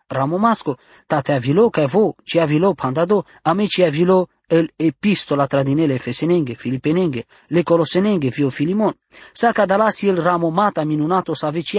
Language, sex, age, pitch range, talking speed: English, male, 20-39, 145-200 Hz, 145 wpm